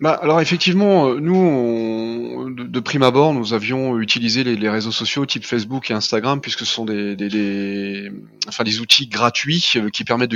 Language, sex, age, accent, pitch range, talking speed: French, male, 30-49, French, 115-145 Hz, 190 wpm